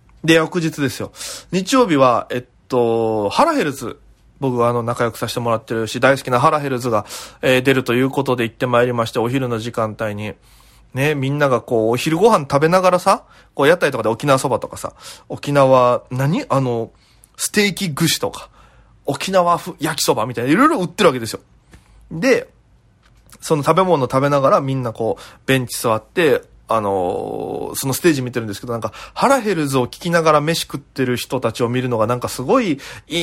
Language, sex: Japanese, male